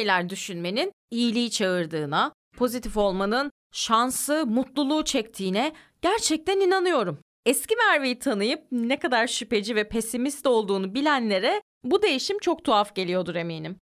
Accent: native